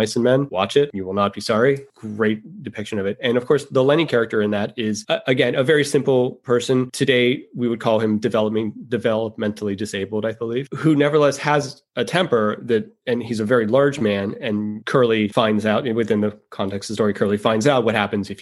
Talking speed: 215 wpm